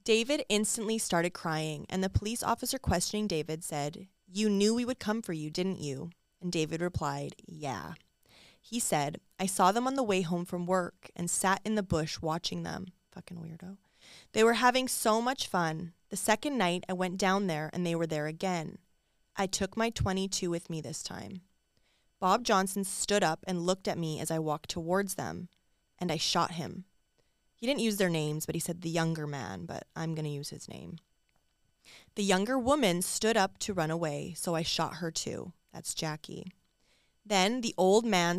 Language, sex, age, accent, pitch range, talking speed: English, female, 20-39, American, 165-205 Hz, 195 wpm